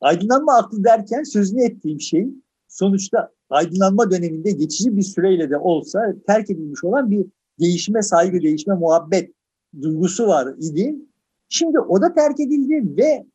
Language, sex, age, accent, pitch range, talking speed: Turkish, male, 50-69, native, 185-290 Hz, 140 wpm